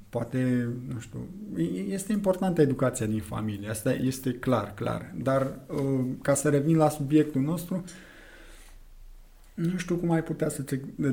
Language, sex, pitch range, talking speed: Romanian, male, 120-150 Hz, 140 wpm